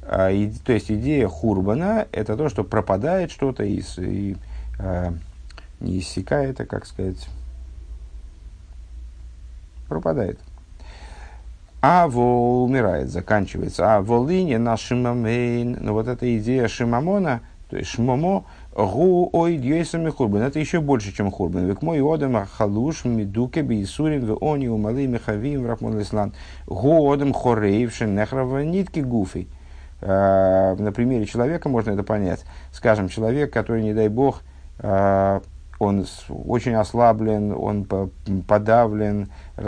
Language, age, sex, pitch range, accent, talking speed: Russian, 50-69, male, 90-120 Hz, native, 125 wpm